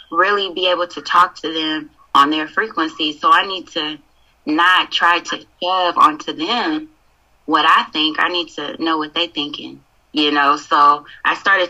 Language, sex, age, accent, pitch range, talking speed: English, female, 20-39, American, 150-205 Hz, 180 wpm